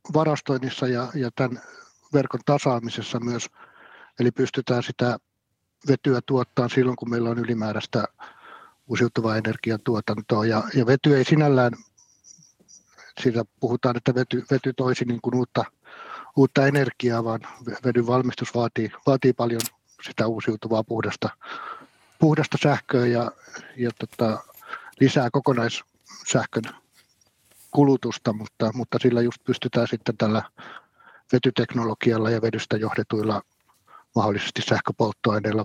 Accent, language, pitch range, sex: native, Finnish, 110-130 Hz, male